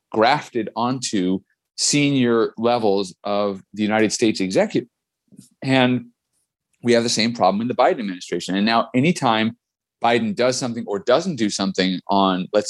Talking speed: 145 wpm